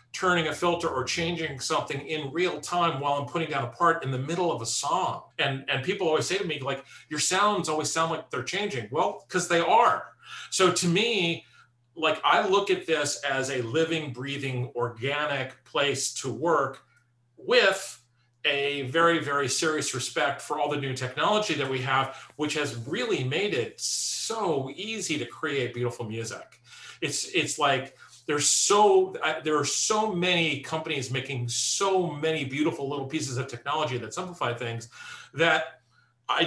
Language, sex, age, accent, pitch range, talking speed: English, male, 40-59, American, 130-165 Hz, 170 wpm